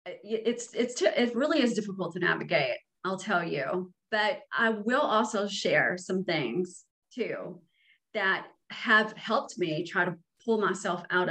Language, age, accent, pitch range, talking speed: English, 30-49, American, 180-230 Hz, 150 wpm